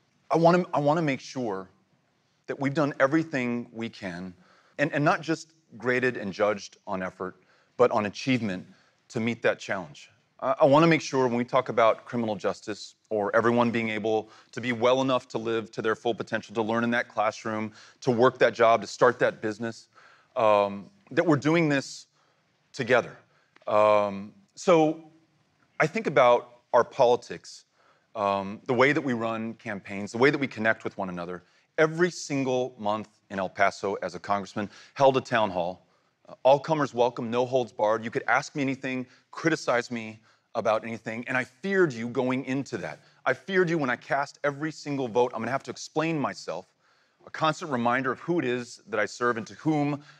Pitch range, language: 110-145 Hz, English